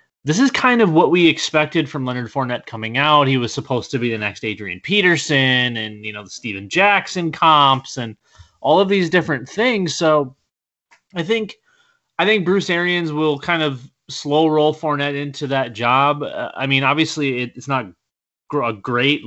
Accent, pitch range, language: American, 120-160 Hz, English